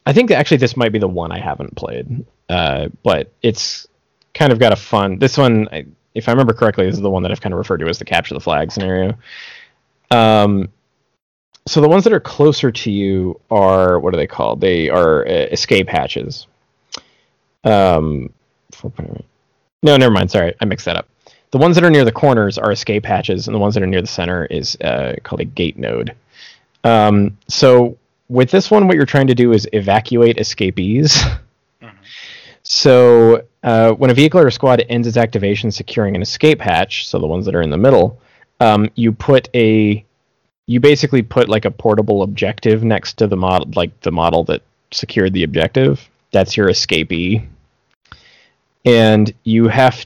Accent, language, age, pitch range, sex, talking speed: American, English, 20-39, 100-130 Hz, male, 185 wpm